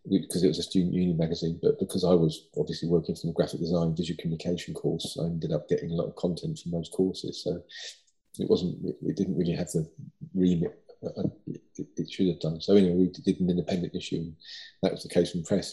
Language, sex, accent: English, male, British